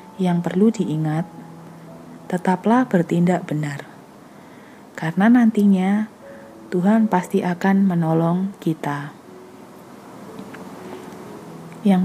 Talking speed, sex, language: 70 wpm, female, Indonesian